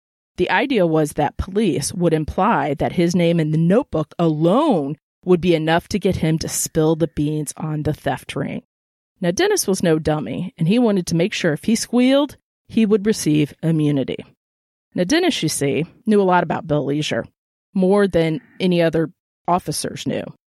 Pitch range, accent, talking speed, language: 155-190 Hz, American, 180 wpm, English